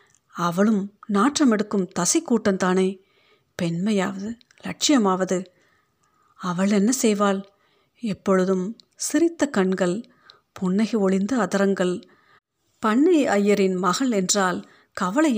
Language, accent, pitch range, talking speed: Tamil, native, 185-235 Hz, 80 wpm